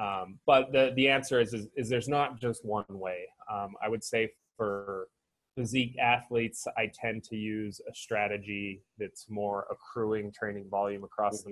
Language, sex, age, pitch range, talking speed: English, male, 20-39, 100-115 Hz, 170 wpm